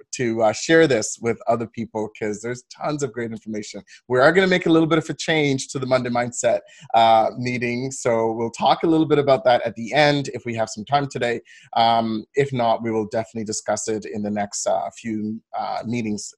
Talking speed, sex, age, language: 225 wpm, male, 30-49, English